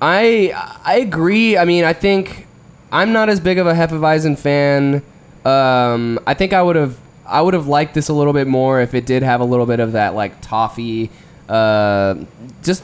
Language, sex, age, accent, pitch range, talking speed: English, male, 20-39, American, 115-150 Hz, 200 wpm